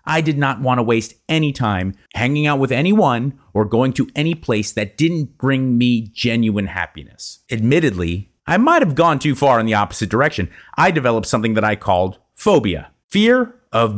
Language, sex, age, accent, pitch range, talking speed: English, male, 30-49, American, 105-145 Hz, 185 wpm